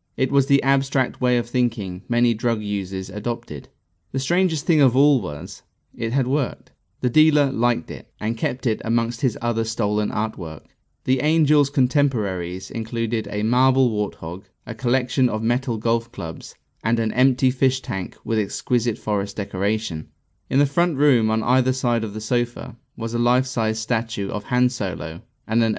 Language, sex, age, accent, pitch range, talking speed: English, male, 30-49, British, 105-125 Hz, 170 wpm